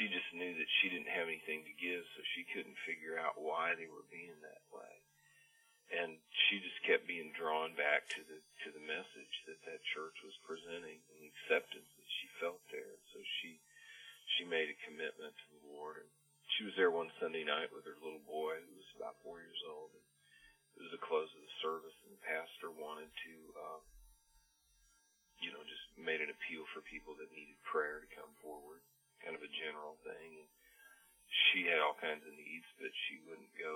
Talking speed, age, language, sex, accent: 205 wpm, 40-59, English, male, American